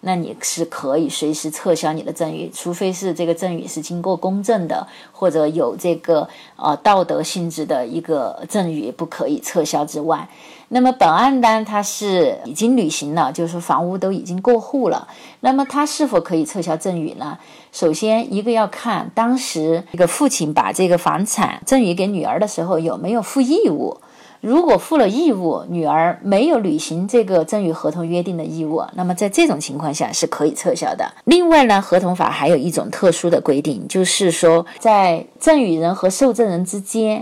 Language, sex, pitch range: Chinese, female, 165-240 Hz